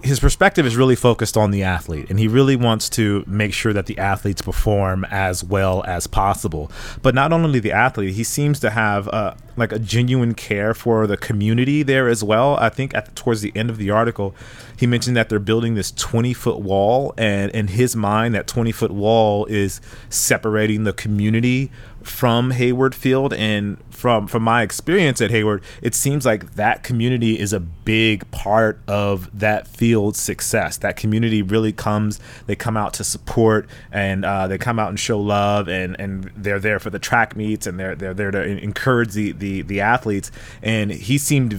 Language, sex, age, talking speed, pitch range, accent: English, male, 30-49, 190 wpm, 105-120 Hz, American